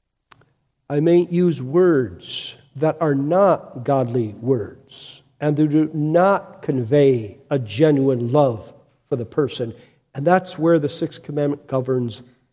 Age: 50-69